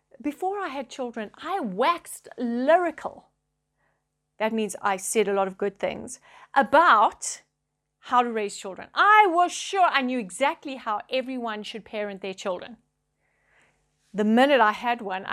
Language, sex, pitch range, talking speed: English, female, 240-345 Hz, 150 wpm